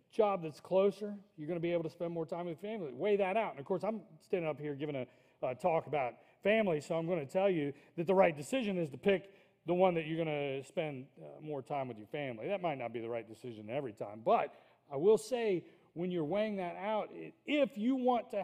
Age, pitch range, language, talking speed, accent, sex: 40-59, 130-185 Hz, English, 255 wpm, American, male